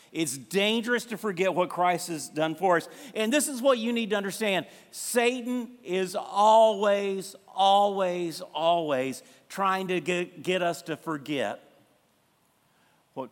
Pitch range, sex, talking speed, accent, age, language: 180-215 Hz, male, 135 wpm, American, 50-69, English